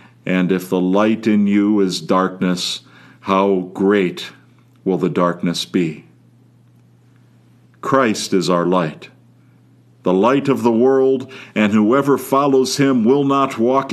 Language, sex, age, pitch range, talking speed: English, male, 50-69, 95-130 Hz, 130 wpm